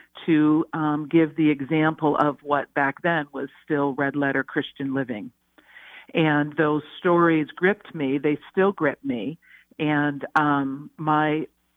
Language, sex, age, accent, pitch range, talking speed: English, female, 50-69, American, 145-165 Hz, 135 wpm